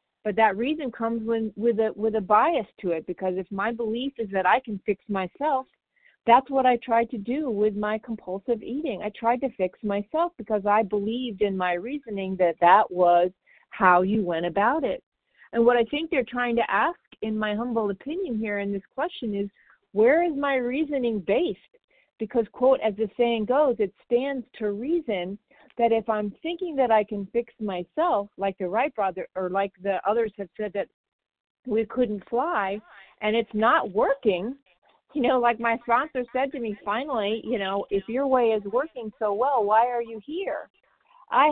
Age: 50-69